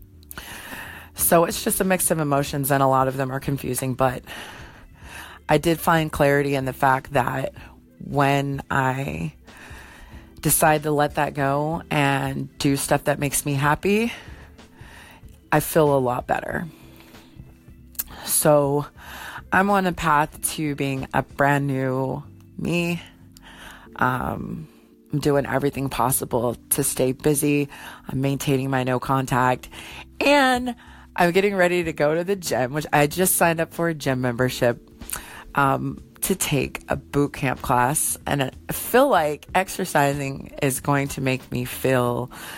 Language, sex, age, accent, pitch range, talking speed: English, female, 30-49, American, 125-155 Hz, 145 wpm